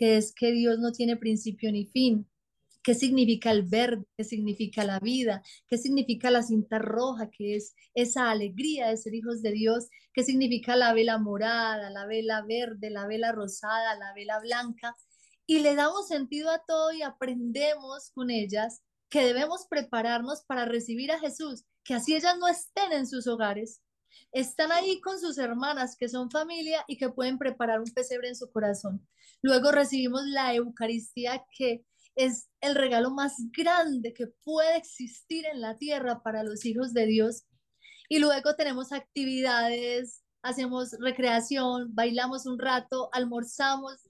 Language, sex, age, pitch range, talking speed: Spanish, female, 30-49, 225-275 Hz, 160 wpm